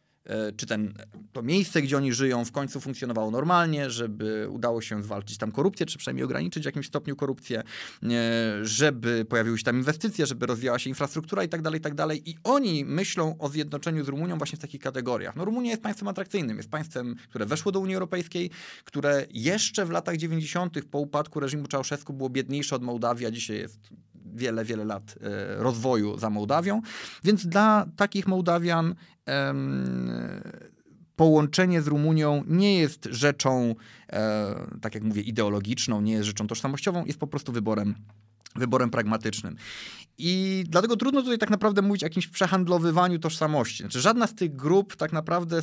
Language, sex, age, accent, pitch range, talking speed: Polish, male, 30-49, native, 115-165 Hz, 165 wpm